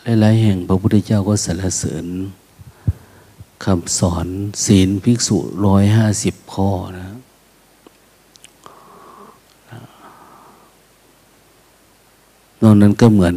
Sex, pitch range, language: male, 90-110 Hz, Thai